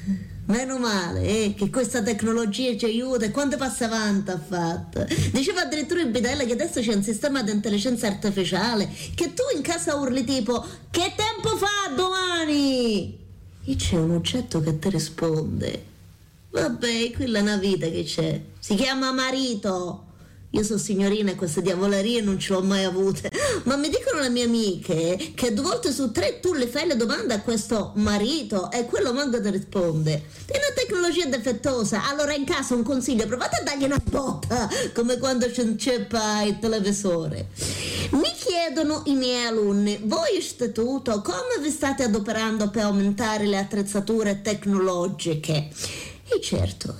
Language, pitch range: Italian, 190-270 Hz